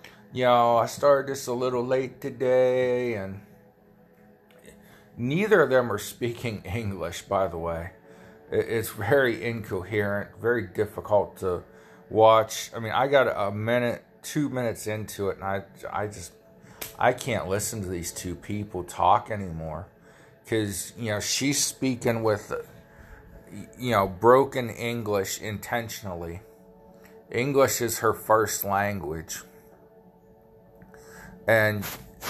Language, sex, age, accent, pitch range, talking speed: English, male, 40-59, American, 95-120 Hz, 125 wpm